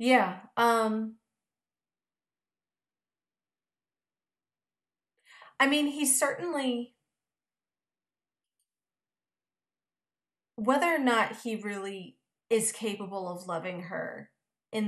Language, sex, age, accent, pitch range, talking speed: English, female, 30-49, American, 185-230 Hz, 70 wpm